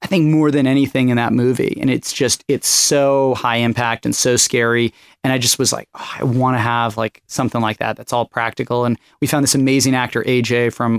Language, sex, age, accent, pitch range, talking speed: English, male, 30-49, American, 125-150 Hz, 230 wpm